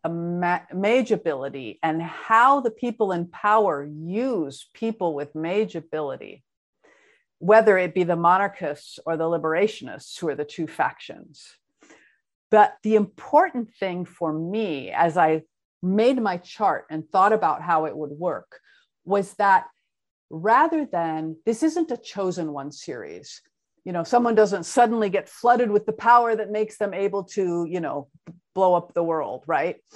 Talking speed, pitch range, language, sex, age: 155 wpm, 165-220 Hz, English, female, 50-69